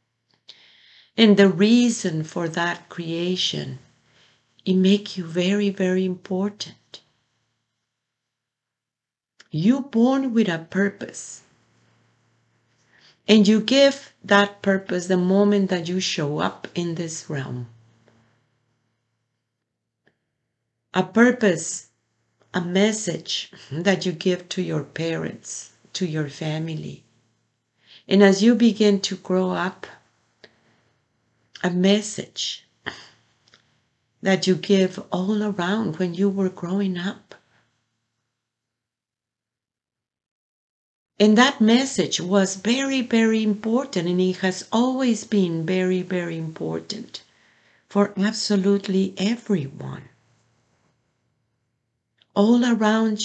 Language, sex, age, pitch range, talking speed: English, female, 50-69, 120-200 Hz, 95 wpm